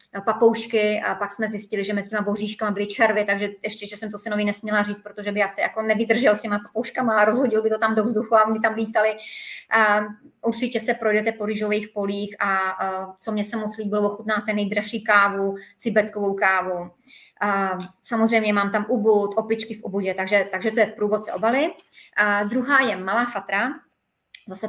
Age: 30-49